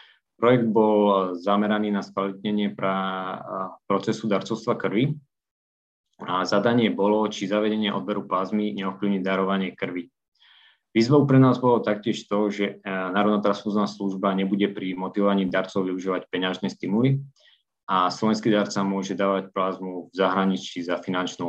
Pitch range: 95-105 Hz